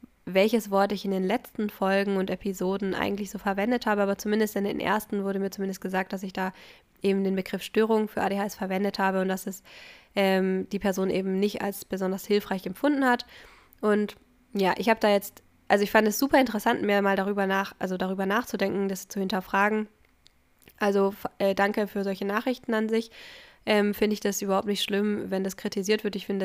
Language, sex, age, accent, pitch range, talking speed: German, female, 10-29, German, 190-210 Hz, 205 wpm